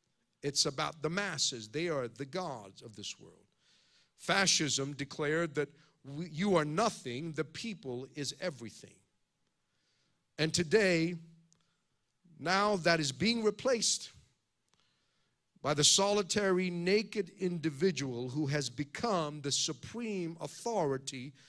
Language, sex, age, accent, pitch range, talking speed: English, male, 50-69, American, 145-190 Hz, 110 wpm